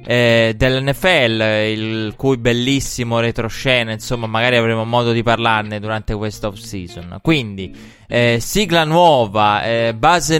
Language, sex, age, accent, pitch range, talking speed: Italian, male, 20-39, native, 110-130 Hz, 120 wpm